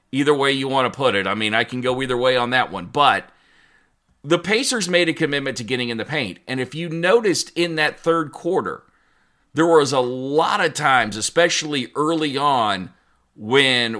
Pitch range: 120-160 Hz